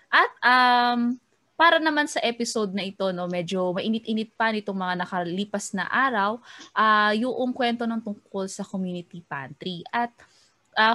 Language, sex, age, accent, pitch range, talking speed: Filipino, female, 20-39, native, 180-235 Hz, 150 wpm